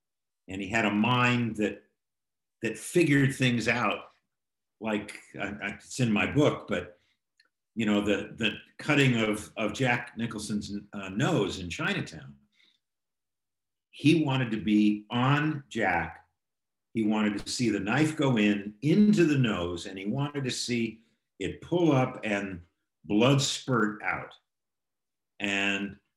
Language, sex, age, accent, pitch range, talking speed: English, male, 50-69, American, 105-165 Hz, 135 wpm